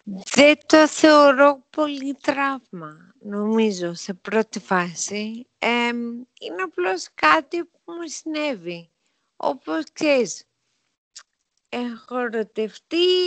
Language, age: Greek, 50-69